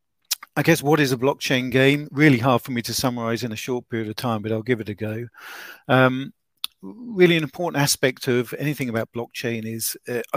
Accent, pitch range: British, 115-140 Hz